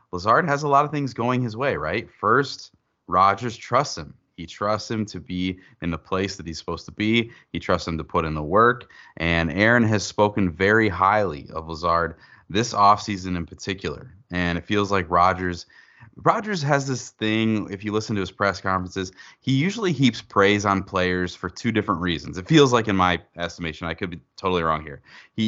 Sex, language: male, English